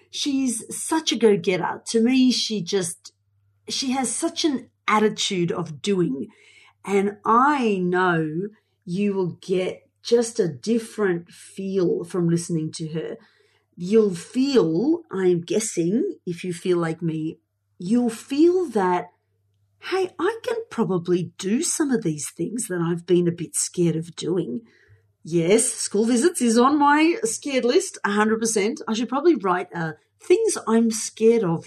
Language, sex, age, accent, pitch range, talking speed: English, female, 40-59, Australian, 170-240 Hz, 145 wpm